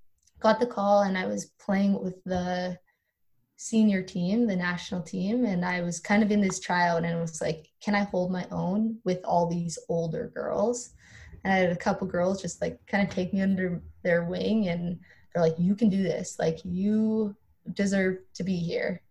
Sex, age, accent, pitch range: female, 20-39, American, 180-215 Hz